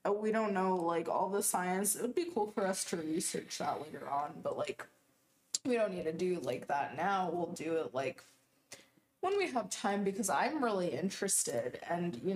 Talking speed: 205 wpm